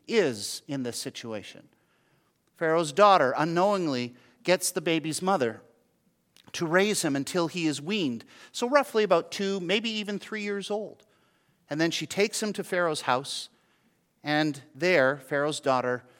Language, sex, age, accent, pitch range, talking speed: English, male, 50-69, American, 140-185 Hz, 145 wpm